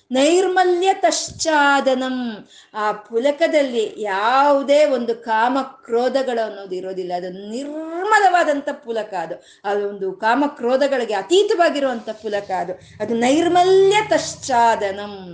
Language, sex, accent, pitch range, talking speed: Kannada, female, native, 235-330 Hz, 85 wpm